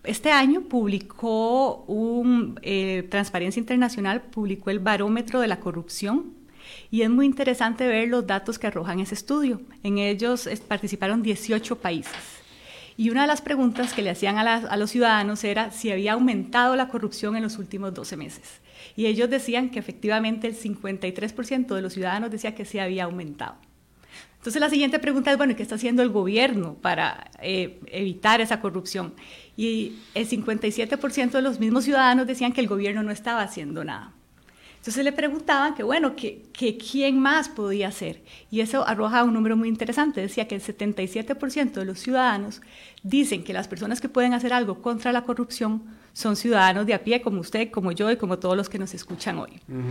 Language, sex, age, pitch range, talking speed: Spanish, female, 30-49, 200-245 Hz, 185 wpm